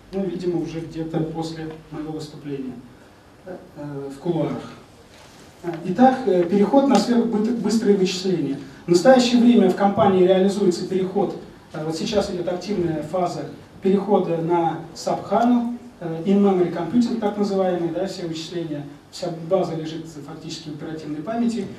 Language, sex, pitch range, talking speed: Russian, male, 160-200 Hz, 125 wpm